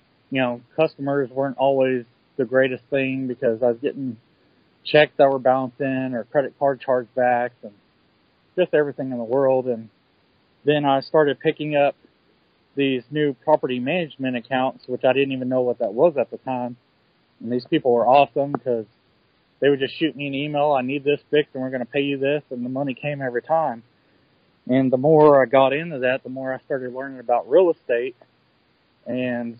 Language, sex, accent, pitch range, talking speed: English, male, American, 120-140 Hz, 190 wpm